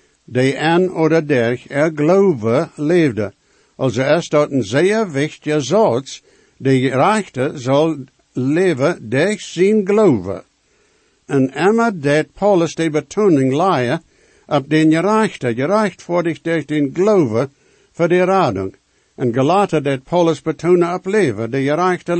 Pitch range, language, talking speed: 140-185 Hz, English, 130 wpm